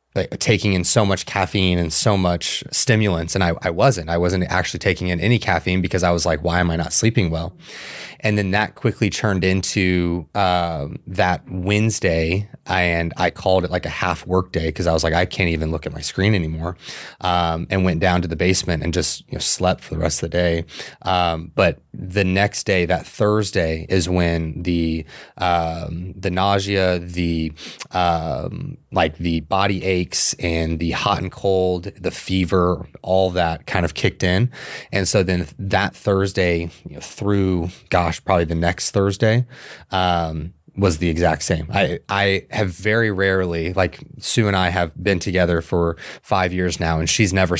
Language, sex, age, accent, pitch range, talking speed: English, male, 20-39, American, 85-95 Hz, 185 wpm